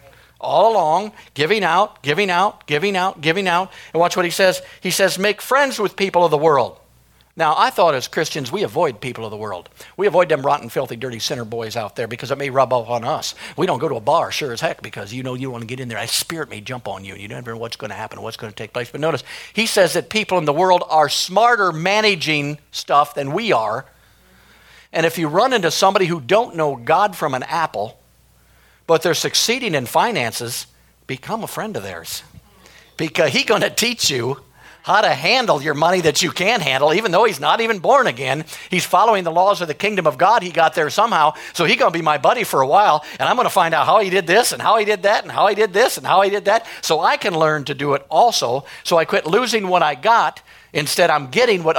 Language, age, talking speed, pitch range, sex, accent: English, 50-69, 250 wpm, 135-195 Hz, male, American